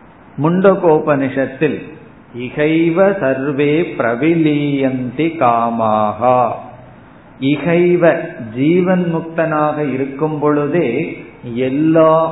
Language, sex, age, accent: Tamil, male, 50-69, native